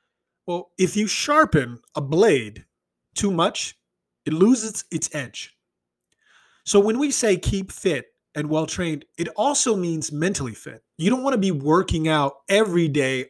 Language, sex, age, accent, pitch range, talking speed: English, male, 30-49, American, 140-190 Hz, 160 wpm